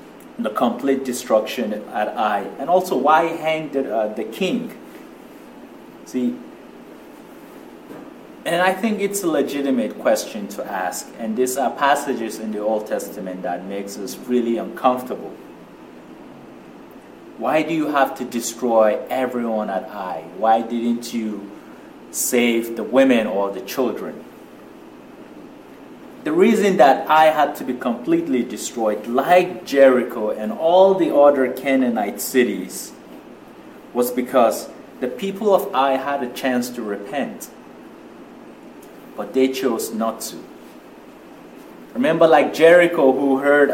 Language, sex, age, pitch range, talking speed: English, male, 30-49, 120-165 Hz, 125 wpm